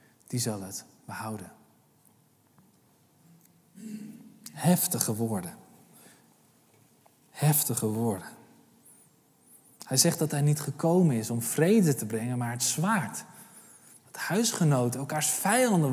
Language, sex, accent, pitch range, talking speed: Dutch, male, Dutch, 130-170 Hz, 100 wpm